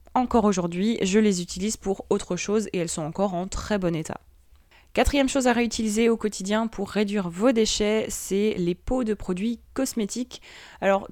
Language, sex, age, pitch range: French, female, 20-39, 185-230 Hz